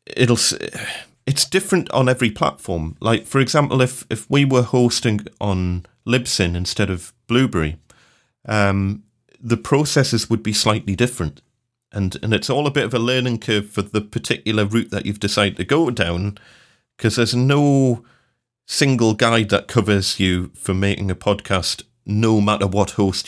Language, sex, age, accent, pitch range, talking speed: English, male, 30-49, British, 90-115 Hz, 160 wpm